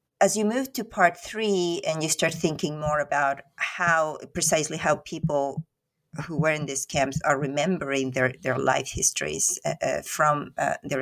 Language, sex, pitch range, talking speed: English, female, 135-165 Hz, 175 wpm